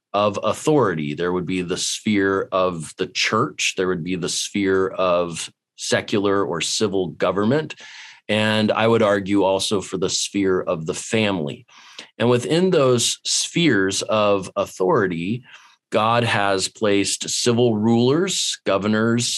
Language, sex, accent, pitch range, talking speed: English, male, American, 95-110 Hz, 135 wpm